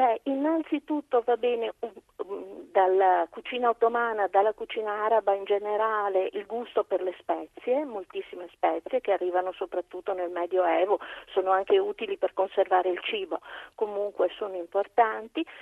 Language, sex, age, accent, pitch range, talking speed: Italian, female, 40-59, native, 190-260 Hz, 130 wpm